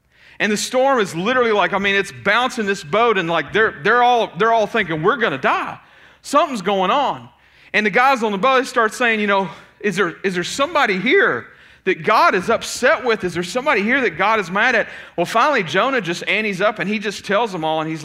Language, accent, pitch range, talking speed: English, American, 165-220 Hz, 240 wpm